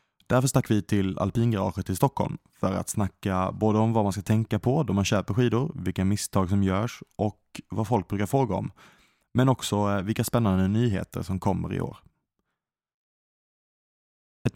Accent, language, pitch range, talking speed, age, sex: Norwegian, English, 90-110 Hz, 170 wpm, 20-39, male